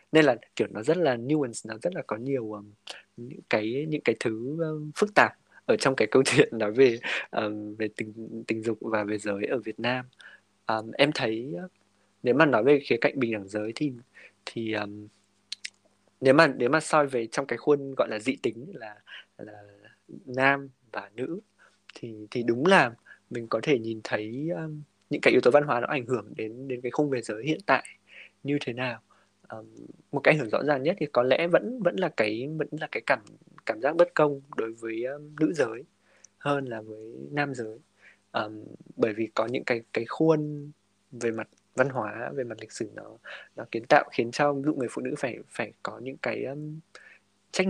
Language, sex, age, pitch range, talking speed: Vietnamese, male, 20-39, 110-145 Hz, 210 wpm